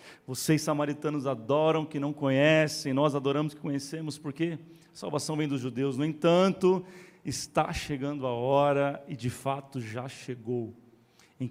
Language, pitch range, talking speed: Portuguese, 125-140 Hz, 140 wpm